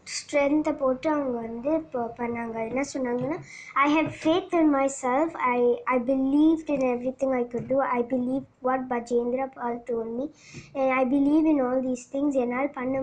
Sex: male